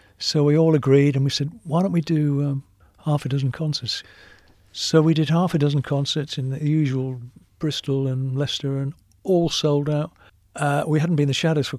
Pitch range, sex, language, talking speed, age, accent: 125-155 Hz, male, English, 210 wpm, 60-79, British